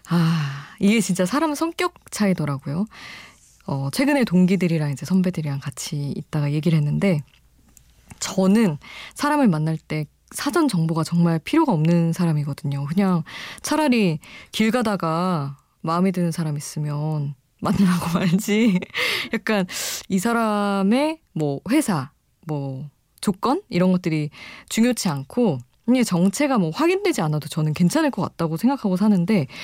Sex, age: female, 20-39